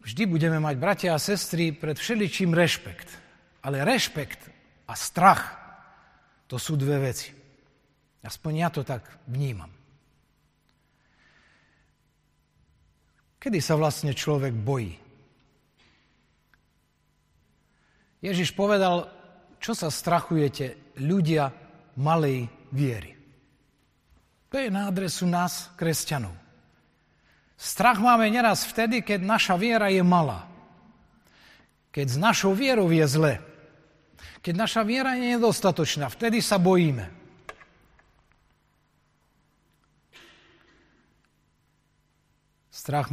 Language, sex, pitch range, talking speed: Slovak, male, 140-190 Hz, 90 wpm